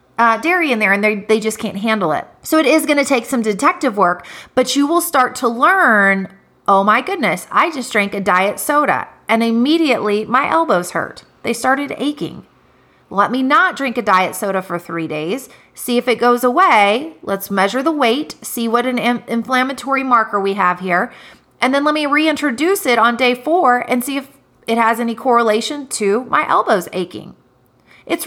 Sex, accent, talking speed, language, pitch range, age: female, American, 190 wpm, English, 210-270 Hz, 30-49